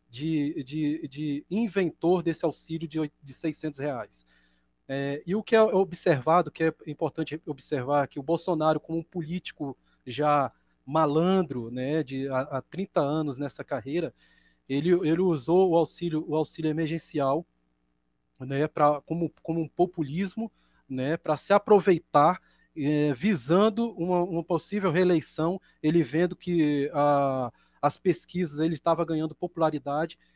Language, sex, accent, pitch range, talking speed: Portuguese, male, Brazilian, 150-180 Hz, 140 wpm